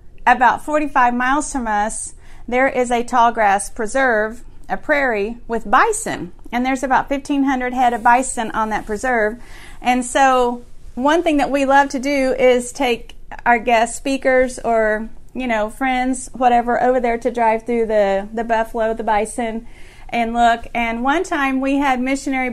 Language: English